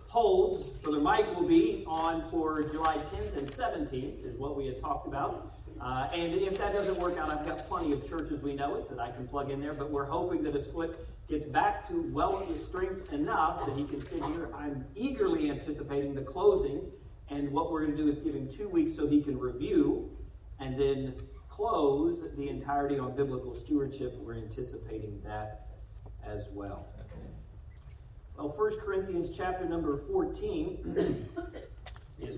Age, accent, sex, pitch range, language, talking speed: 40-59, American, male, 130-210 Hz, English, 175 wpm